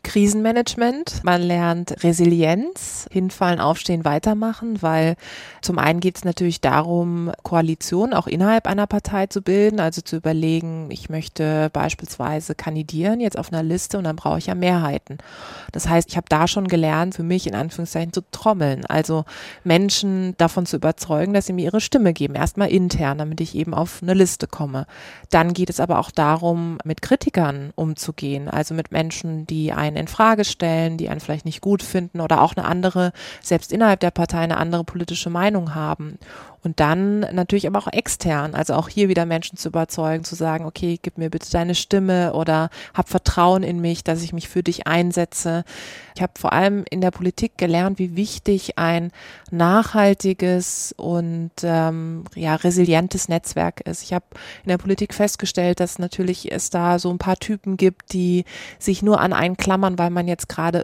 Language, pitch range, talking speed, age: German, 165-185 Hz, 180 wpm, 20-39